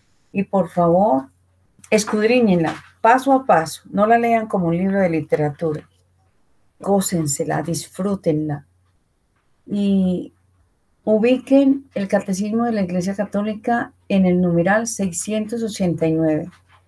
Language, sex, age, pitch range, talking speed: Spanish, female, 40-59, 155-200 Hz, 105 wpm